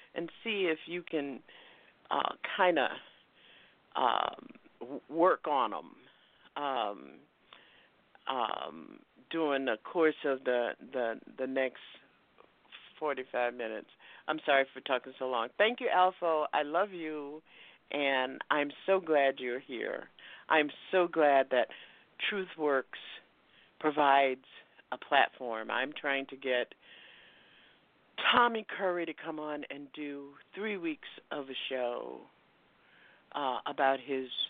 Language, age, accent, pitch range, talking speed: English, 50-69, American, 130-165 Hz, 120 wpm